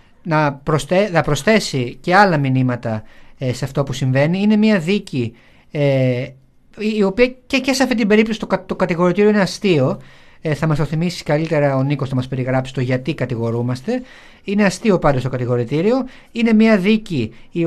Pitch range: 135-200 Hz